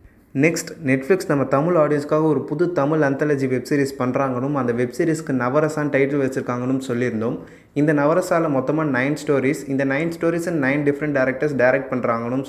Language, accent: Tamil, native